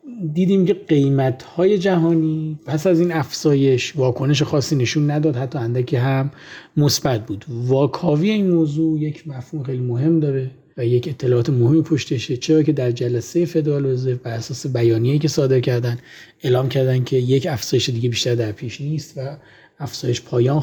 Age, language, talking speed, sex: 30-49, Persian, 160 wpm, male